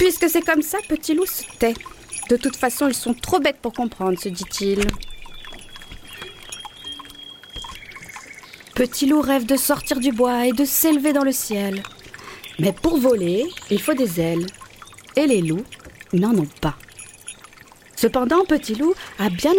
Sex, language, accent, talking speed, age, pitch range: female, French, French, 155 wpm, 40-59, 185-280 Hz